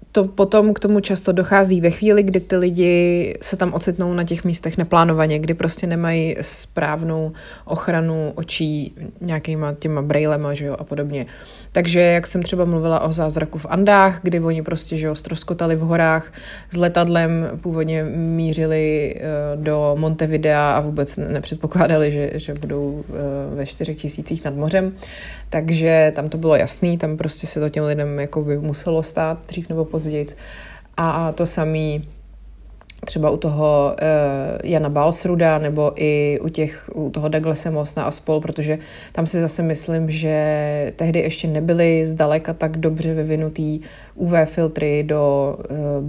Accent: native